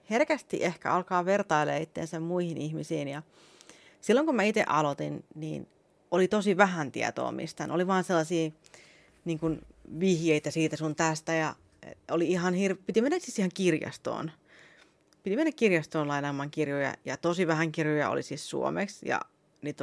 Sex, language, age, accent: female, Finnish, 30-49, native